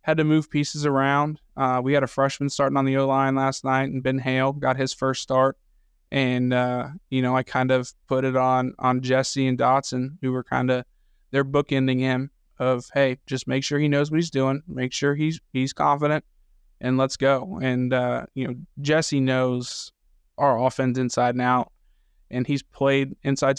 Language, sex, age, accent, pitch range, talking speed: English, male, 20-39, American, 125-135 Hz, 200 wpm